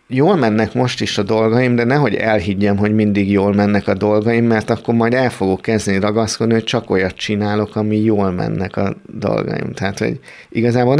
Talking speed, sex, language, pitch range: 185 wpm, male, Hungarian, 105-125 Hz